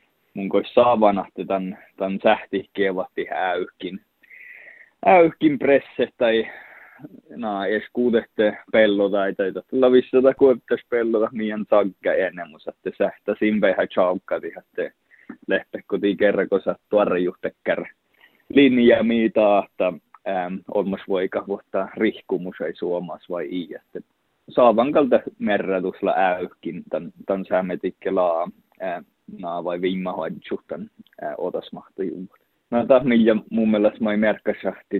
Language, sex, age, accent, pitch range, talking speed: Czech, male, 20-39, Finnish, 95-115 Hz, 100 wpm